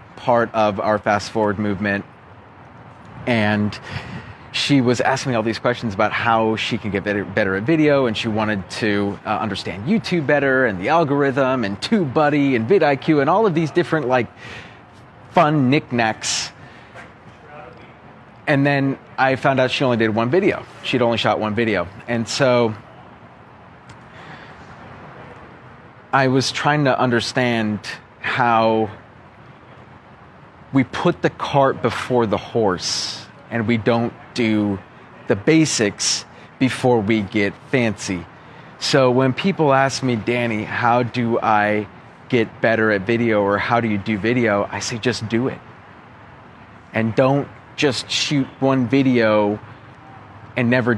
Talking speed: 140 wpm